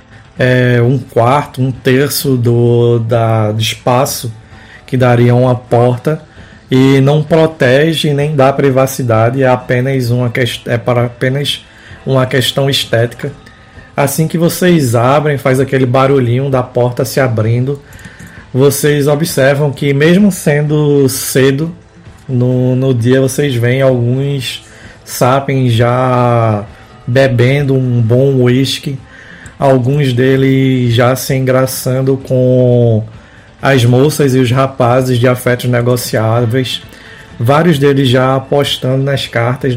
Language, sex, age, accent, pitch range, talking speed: Portuguese, male, 20-39, Brazilian, 120-140 Hz, 110 wpm